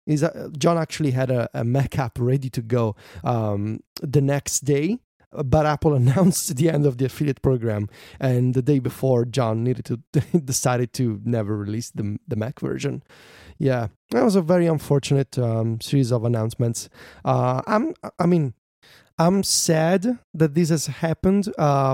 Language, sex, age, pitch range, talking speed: English, male, 20-39, 115-145 Hz, 165 wpm